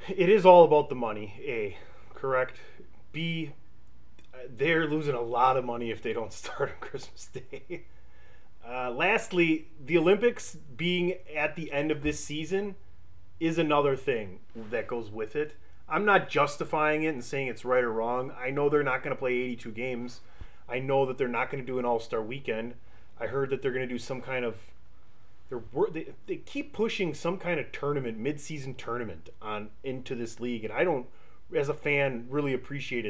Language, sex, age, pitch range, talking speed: English, male, 30-49, 120-155 Hz, 185 wpm